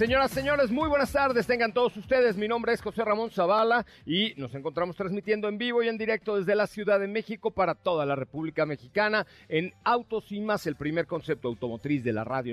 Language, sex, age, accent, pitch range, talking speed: Spanish, male, 40-59, Mexican, 145-210 Hz, 215 wpm